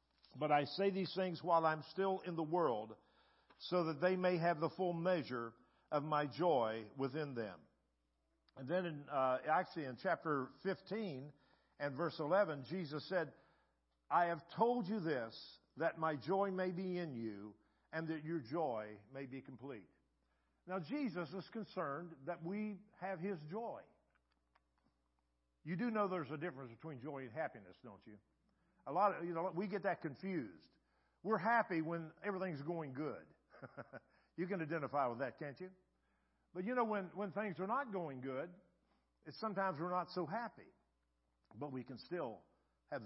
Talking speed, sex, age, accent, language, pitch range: 165 wpm, male, 50-69, American, English, 145-195 Hz